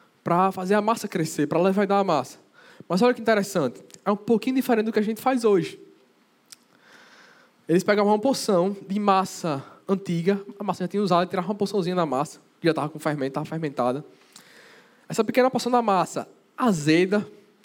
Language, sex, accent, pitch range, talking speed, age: Portuguese, male, Brazilian, 160-225 Hz, 185 wpm, 10-29